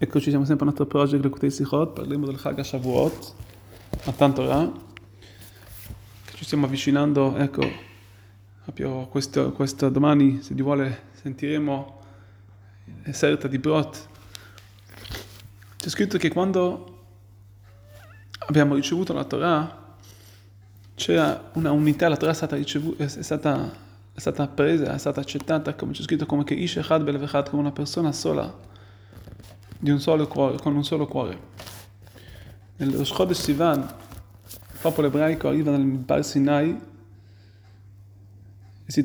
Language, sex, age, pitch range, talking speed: Italian, male, 20-39, 100-150 Hz, 135 wpm